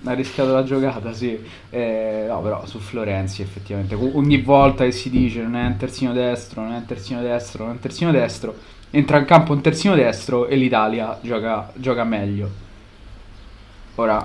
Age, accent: 20-39, native